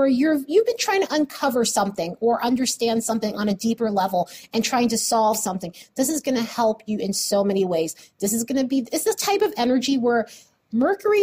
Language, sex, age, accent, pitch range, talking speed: English, female, 30-49, American, 205-280 Hz, 220 wpm